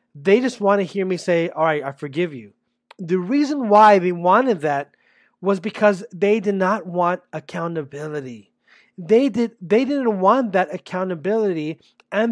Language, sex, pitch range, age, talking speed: English, male, 175-220 Hz, 30-49, 170 wpm